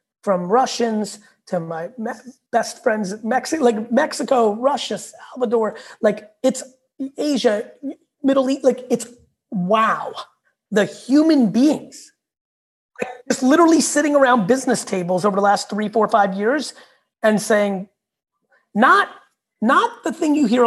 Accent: American